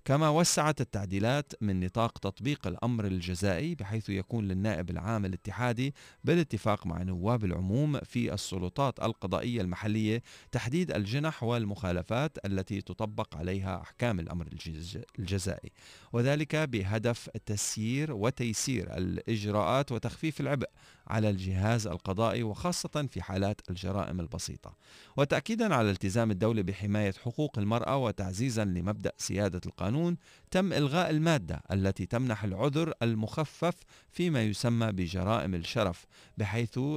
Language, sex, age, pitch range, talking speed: Arabic, male, 40-59, 95-135 Hz, 110 wpm